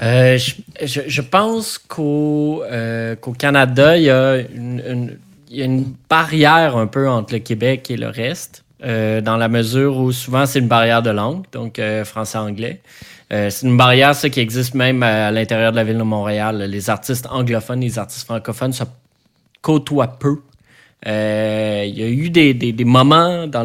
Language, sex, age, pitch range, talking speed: French, male, 20-39, 115-140 Hz, 185 wpm